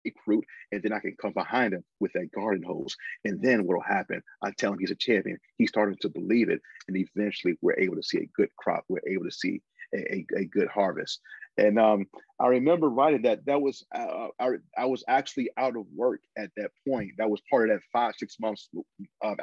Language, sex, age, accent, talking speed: English, male, 40-59, American, 225 wpm